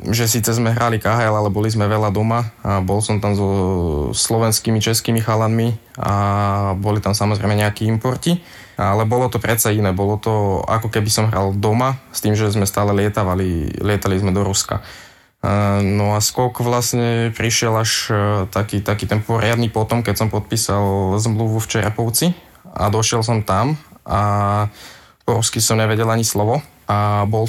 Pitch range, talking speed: 105-120 Hz, 165 wpm